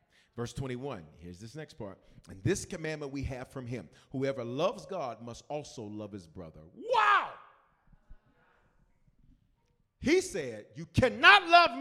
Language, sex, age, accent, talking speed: English, male, 40-59, American, 135 wpm